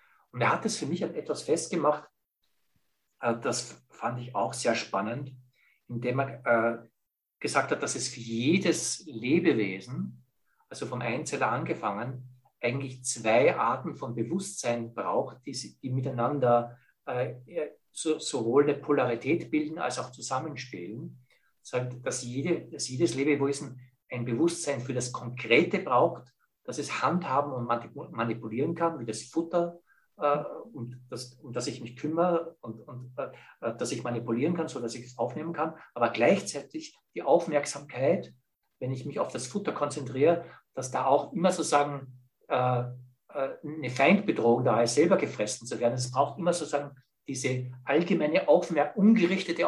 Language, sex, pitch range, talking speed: English, male, 120-155 Hz, 145 wpm